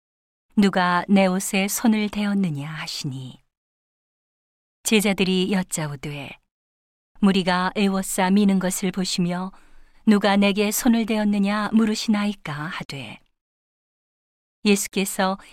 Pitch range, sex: 155-205 Hz, female